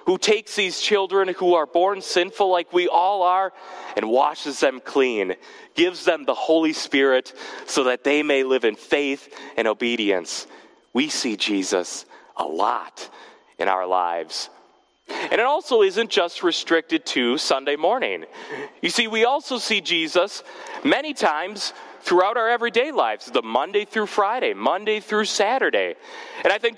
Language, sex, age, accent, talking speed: English, male, 30-49, American, 155 wpm